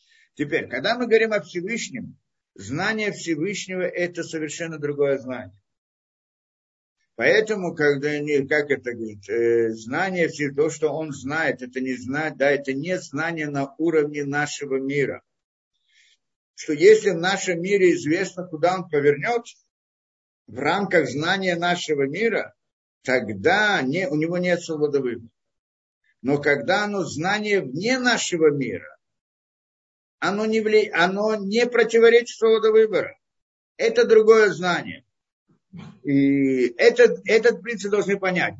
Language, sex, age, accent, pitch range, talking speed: Russian, male, 50-69, native, 140-215 Hz, 125 wpm